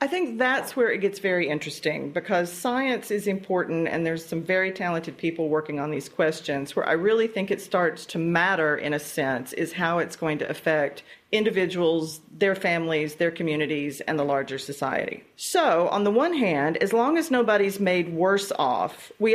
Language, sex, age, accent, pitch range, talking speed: English, female, 40-59, American, 160-215 Hz, 190 wpm